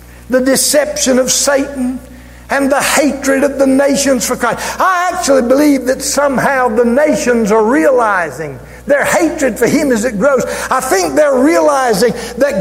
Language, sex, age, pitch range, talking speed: English, male, 60-79, 225-280 Hz, 155 wpm